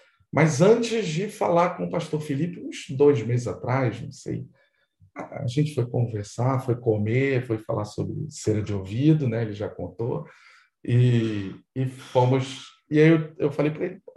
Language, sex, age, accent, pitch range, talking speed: Portuguese, male, 40-59, Brazilian, 115-160 Hz, 170 wpm